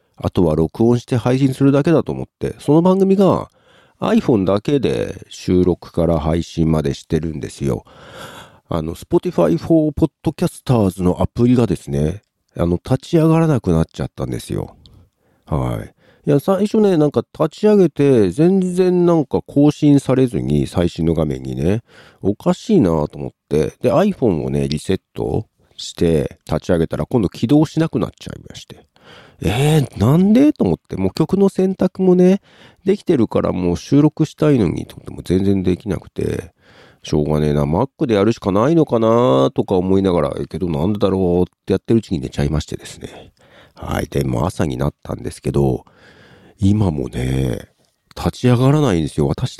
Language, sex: Japanese, male